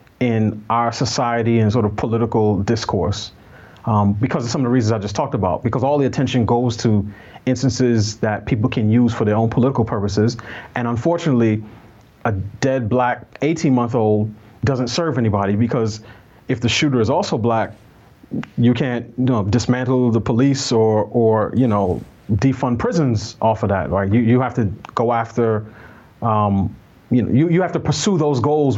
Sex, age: male, 30-49